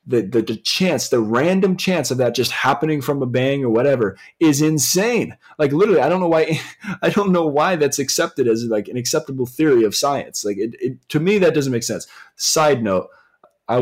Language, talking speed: English, 215 wpm